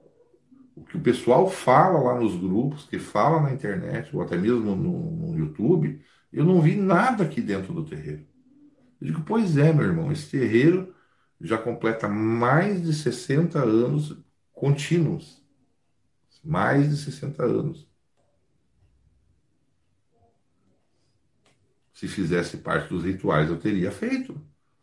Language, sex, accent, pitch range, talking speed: English, male, Brazilian, 115-170 Hz, 130 wpm